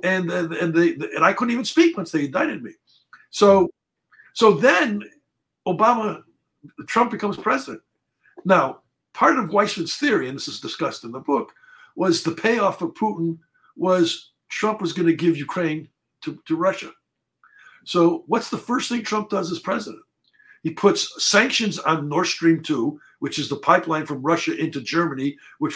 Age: 60-79